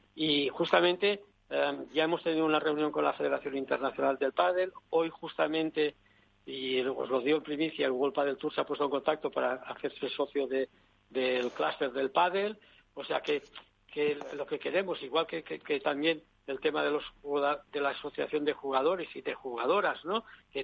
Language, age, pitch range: Spanish, 60-79, 130-170 Hz